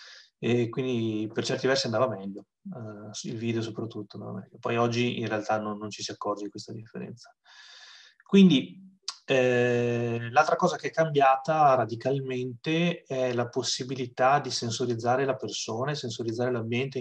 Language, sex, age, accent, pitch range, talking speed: Italian, male, 20-39, native, 110-130 Hz, 150 wpm